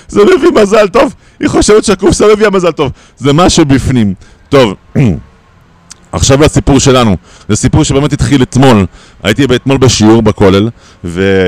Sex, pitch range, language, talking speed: male, 105-155 Hz, Hebrew, 135 wpm